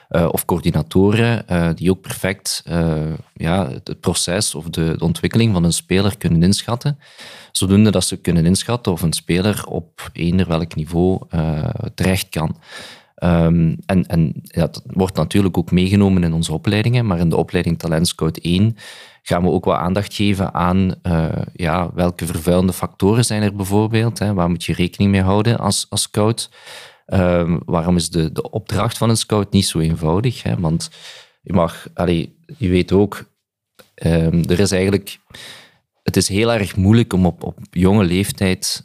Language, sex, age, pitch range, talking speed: Dutch, male, 40-59, 85-105 Hz, 175 wpm